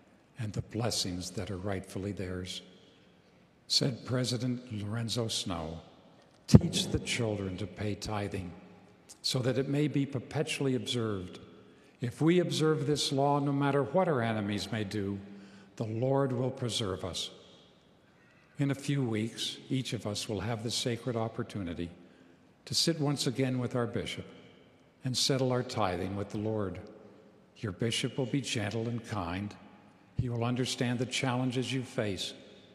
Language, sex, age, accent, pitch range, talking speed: English, male, 50-69, American, 105-130 Hz, 150 wpm